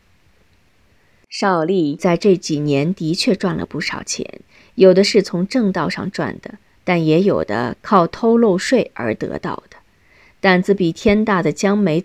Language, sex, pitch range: Chinese, female, 170-225 Hz